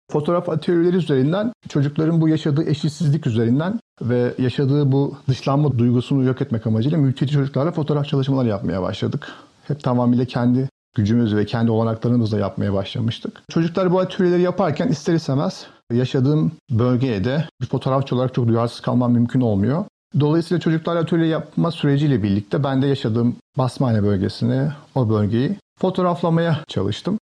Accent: native